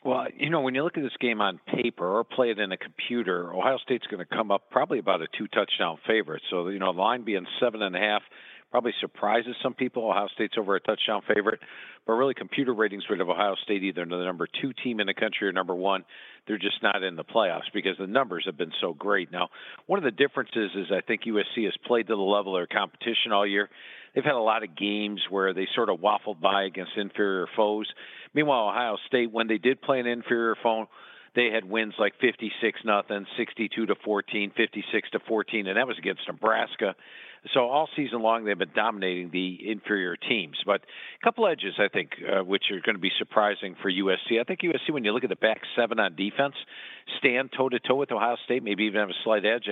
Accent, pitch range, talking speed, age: American, 100-120 Hz, 215 wpm, 50-69